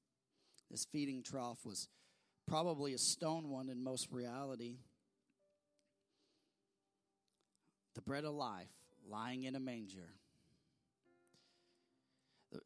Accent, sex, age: American, male, 30-49